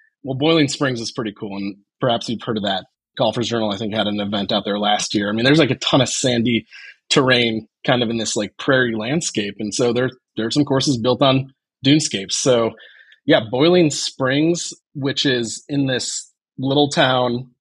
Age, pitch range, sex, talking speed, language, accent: 20-39, 115-145 Hz, male, 200 wpm, English, American